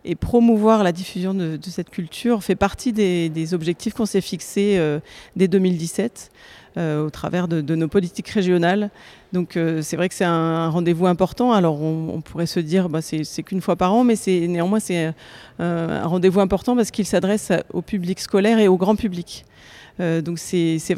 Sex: female